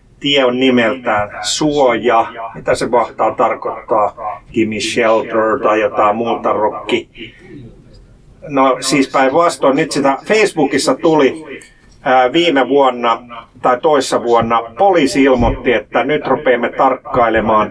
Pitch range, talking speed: 115-140 Hz, 110 wpm